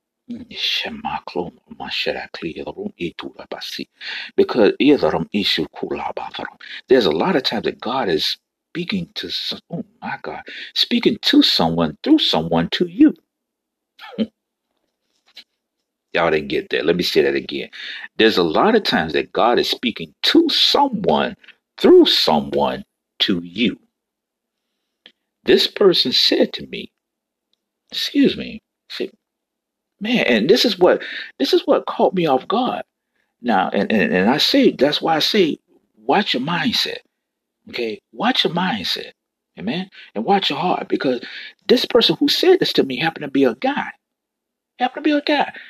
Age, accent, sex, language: 50-69, American, male, English